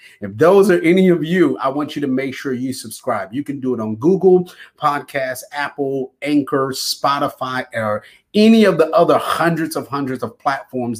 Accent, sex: American, male